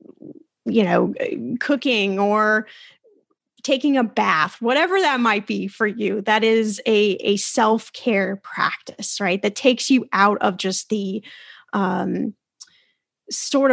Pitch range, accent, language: 210-265 Hz, American, English